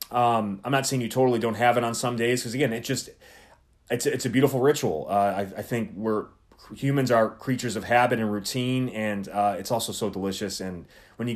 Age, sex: 30-49, male